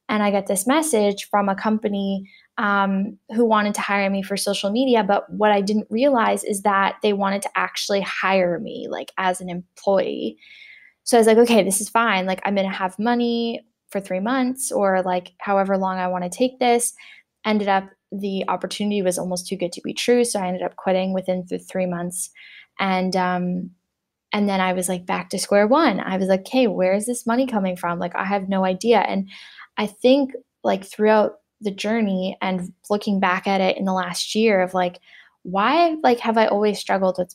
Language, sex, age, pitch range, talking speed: English, female, 10-29, 185-220 Hz, 210 wpm